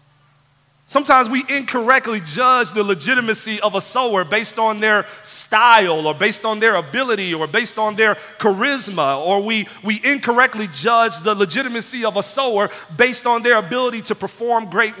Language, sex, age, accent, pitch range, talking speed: English, male, 40-59, American, 185-260 Hz, 160 wpm